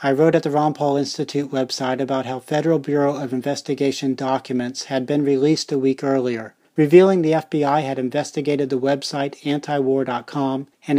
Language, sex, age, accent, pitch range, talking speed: English, male, 40-59, American, 130-155 Hz, 165 wpm